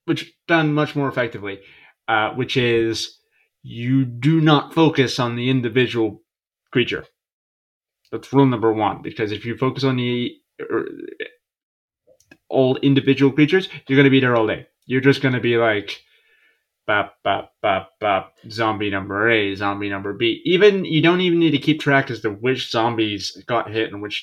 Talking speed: 170 wpm